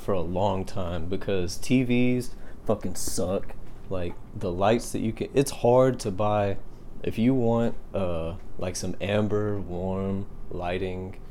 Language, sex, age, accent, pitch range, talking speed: English, male, 30-49, American, 95-115 Hz, 145 wpm